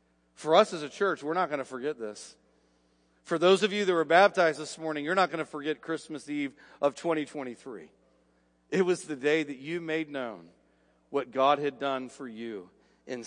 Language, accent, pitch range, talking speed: English, American, 115-165 Hz, 200 wpm